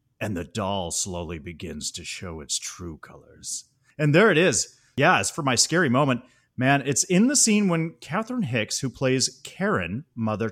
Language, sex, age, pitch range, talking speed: English, male, 30-49, 105-145 Hz, 185 wpm